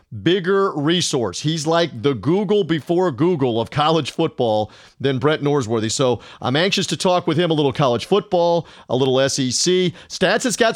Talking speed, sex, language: 175 wpm, male, English